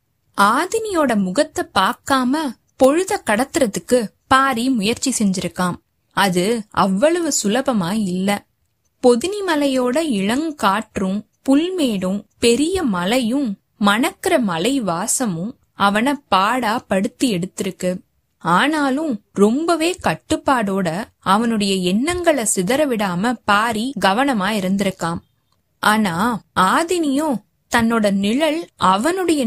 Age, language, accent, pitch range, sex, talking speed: 20-39, Tamil, native, 200-285 Hz, female, 80 wpm